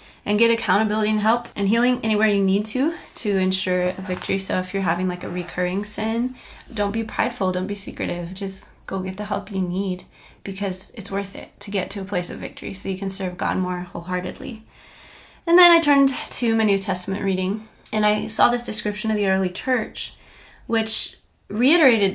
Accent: American